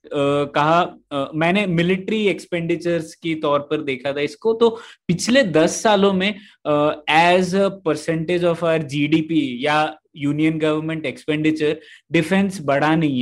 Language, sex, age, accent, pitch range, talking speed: Hindi, male, 20-39, native, 155-200 Hz, 135 wpm